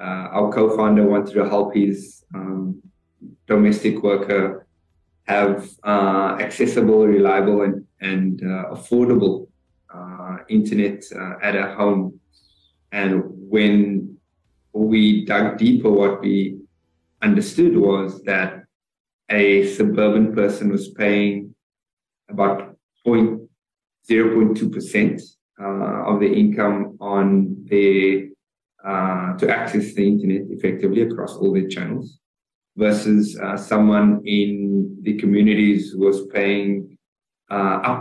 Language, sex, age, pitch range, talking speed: English, male, 20-39, 95-105 Hz, 105 wpm